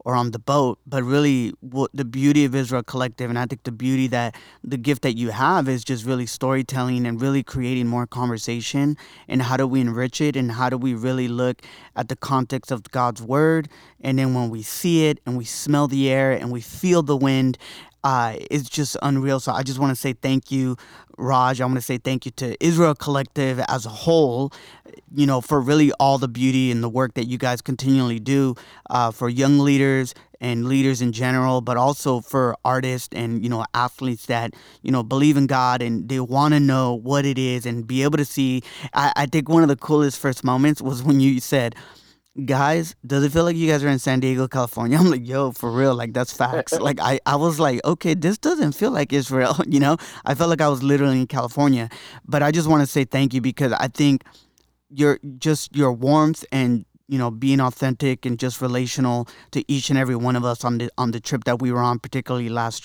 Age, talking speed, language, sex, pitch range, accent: 20-39, 225 wpm, English, male, 125-140 Hz, American